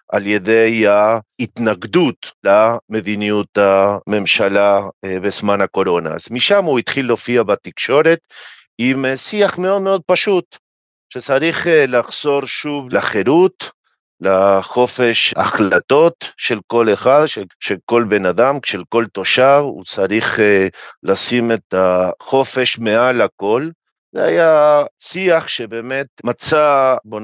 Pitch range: 105-140 Hz